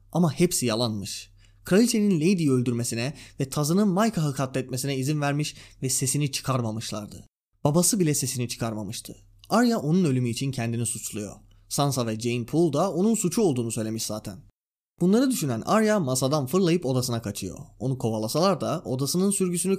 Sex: male